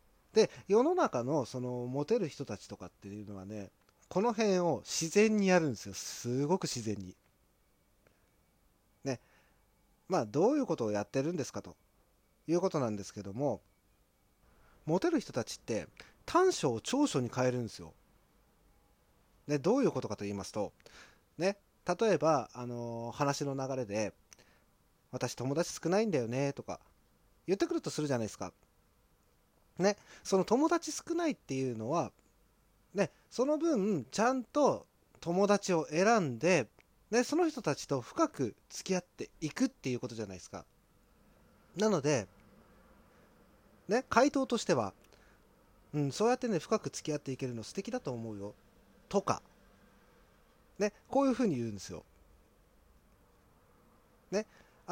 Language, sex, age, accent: Japanese, male, 30-49, native